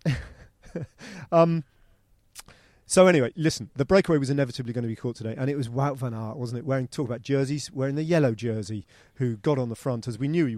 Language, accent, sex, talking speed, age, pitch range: English, British, male, 215 wpm, 40-59, 115-150 Hz